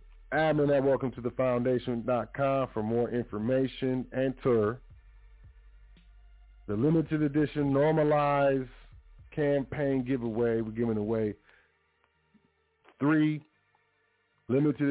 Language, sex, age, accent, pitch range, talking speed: English, male, 40-59, American, 110-140 Hz, 80 wpm